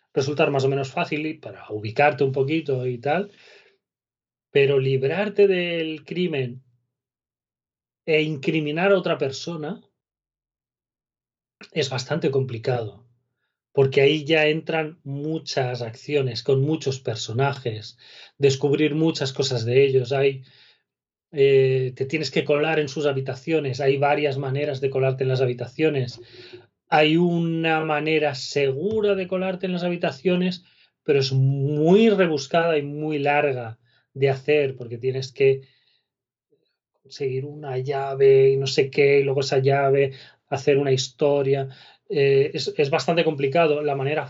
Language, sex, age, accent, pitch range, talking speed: Spanish, male, 30-49, Spanish, 135-160 Hz, 130 wpm